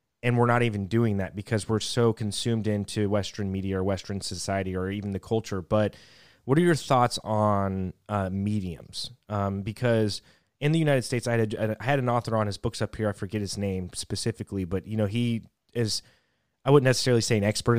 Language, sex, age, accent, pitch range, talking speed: English, male, 20-39, American, 100-115 Hz, 210 wpm